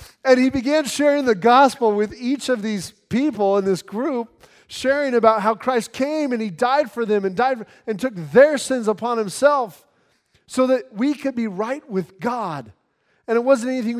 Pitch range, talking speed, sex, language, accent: 180-240 Hz, 190 wpm, male, English, American